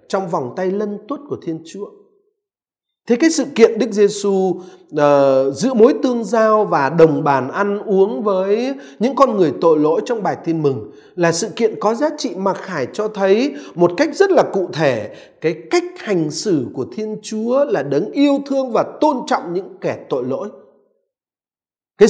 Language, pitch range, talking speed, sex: Vietnamese, 180-275 Hz, 185 wpm, male